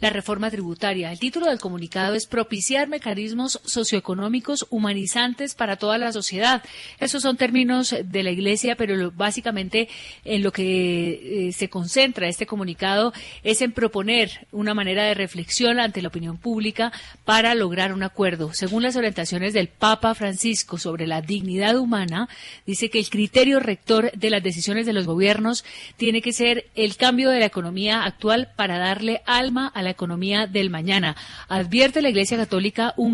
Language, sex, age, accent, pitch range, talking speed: Spanish, female, 40-59, Colombian, 190-230 Hz, 160 wpm